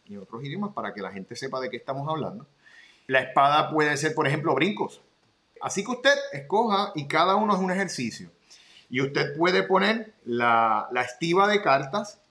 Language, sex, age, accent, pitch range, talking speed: Spanish, male, 30-49, Venezuelan, 135-190 Hz, 185 wpm